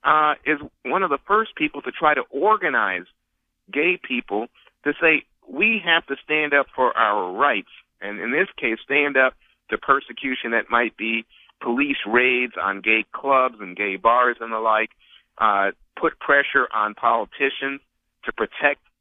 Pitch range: 115-150 Hz